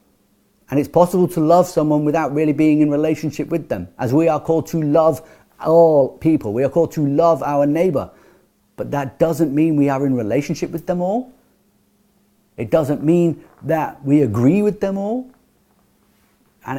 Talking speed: 175 wpm